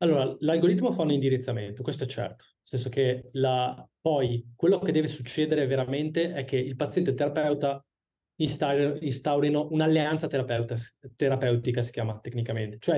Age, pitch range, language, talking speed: 20-39, 125-150 Hz, Italian, 150 wpm